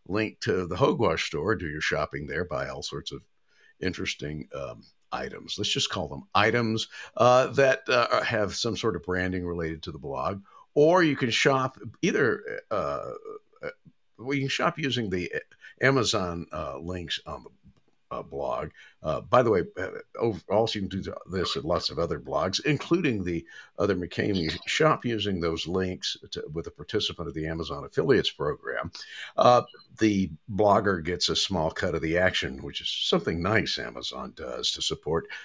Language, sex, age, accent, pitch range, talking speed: English, male, 50-69, American, 90-130 Hz, 175 wpm